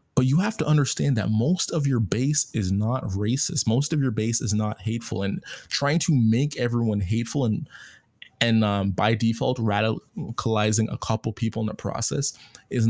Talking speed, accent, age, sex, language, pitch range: 180 wpm, American, 20-39, male, English, 105-130 Hz